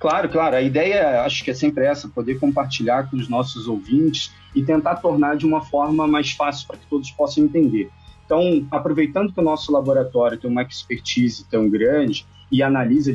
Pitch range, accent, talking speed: 135-165 Hz, Brazilian, 185 wpm